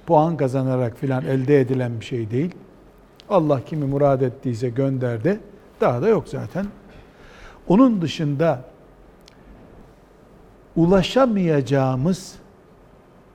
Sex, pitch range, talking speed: male, 135-205 Hz, 90 wpm